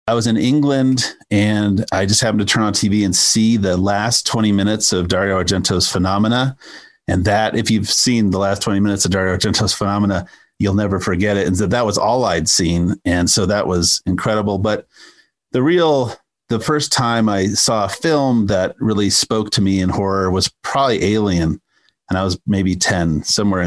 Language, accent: English, American